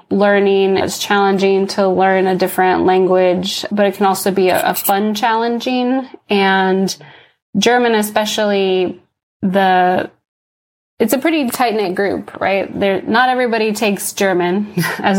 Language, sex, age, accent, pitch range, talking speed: English, female, 20-39, American, 180-200 Hz, 120 wpm